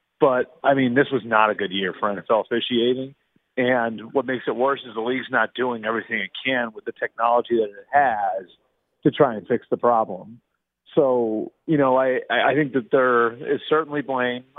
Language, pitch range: English, 115-140 Hz